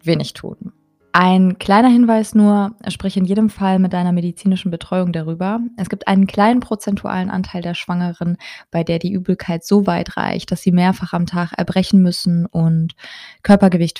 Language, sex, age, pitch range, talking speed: German, female, 20-39, 175-200 Hz, 165 wpm